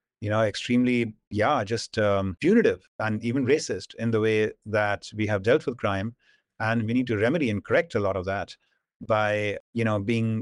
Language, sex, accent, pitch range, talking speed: English, male, Indian, 115-140 Hz, 195 wpm